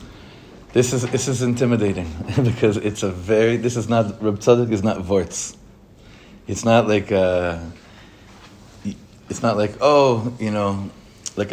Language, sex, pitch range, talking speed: English, male, 100-120 Hz, 145 wpm